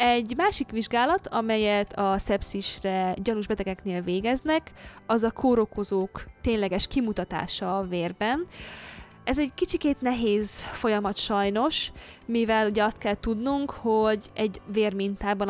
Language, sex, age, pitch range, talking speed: Hungarian, female, 20-39, 190-235 Hz, 110 wpm